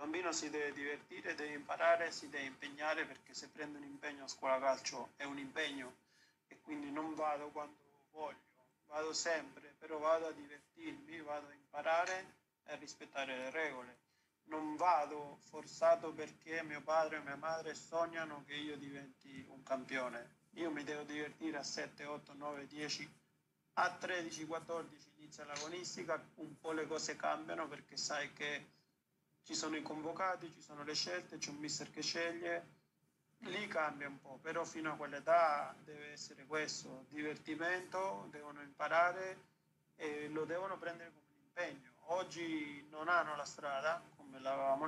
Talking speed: 160 wpm